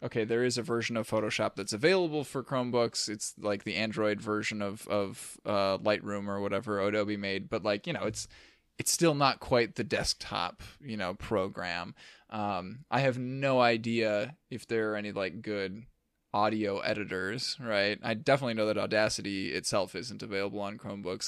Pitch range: 105-135 Hz